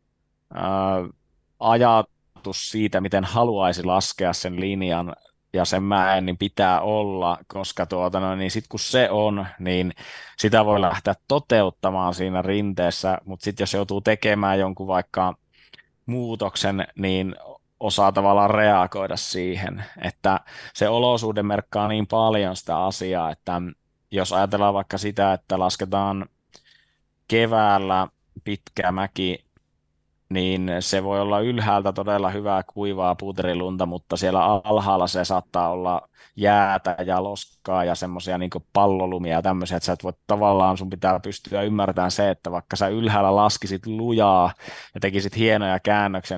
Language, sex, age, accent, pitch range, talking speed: Finnish, male, 20-39, native, 90-105 Hz, 130 wpm